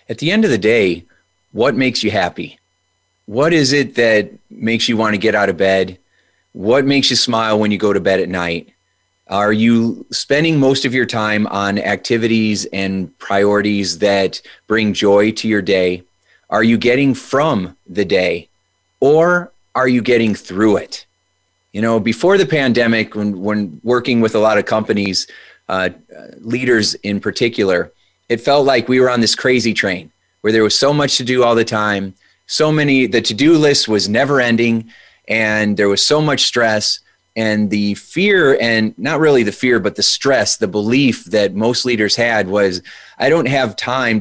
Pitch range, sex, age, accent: 100-120 Hz, male, 30-49, American